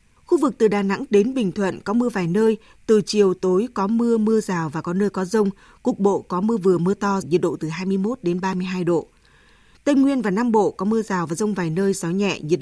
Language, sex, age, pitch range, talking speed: Vietnamese, female, 20-39, 180-225 Hz, 250 wpm